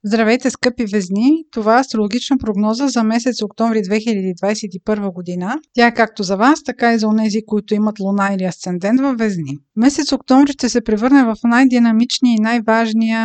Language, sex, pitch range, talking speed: Bulgarian, female, 210-255 Hz, 170 wpm